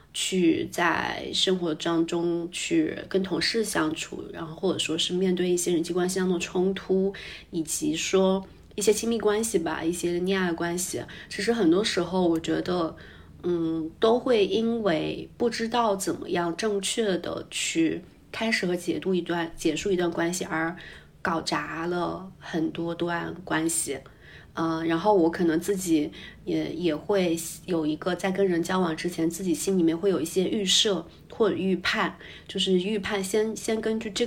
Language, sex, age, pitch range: Chinese, female, 20-39, 165-190 Hz